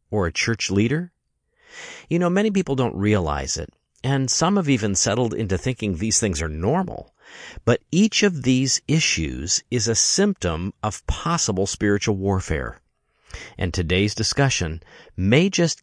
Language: English